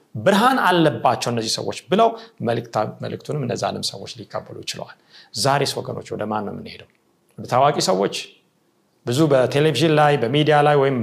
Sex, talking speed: male, 120 wpm